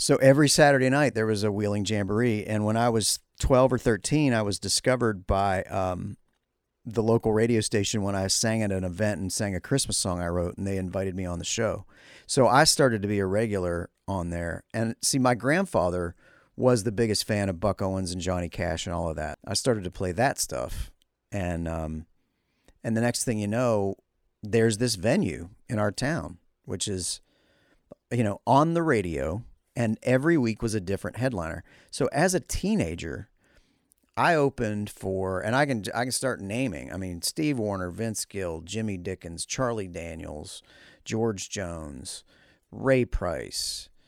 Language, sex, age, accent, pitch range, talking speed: English, male, 40-59, American, 95-120 Hz, 180 wpm